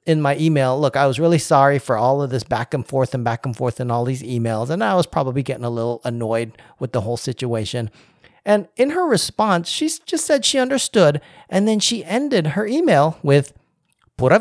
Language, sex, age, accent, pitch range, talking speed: English, male, 40-59, American, 125-170 Hz, 215 wpm